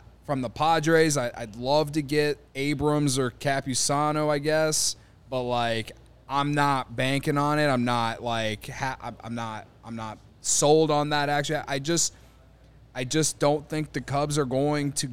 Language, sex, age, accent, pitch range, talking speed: English, male, 20-39, American, 120-150 Hz, 165 wpm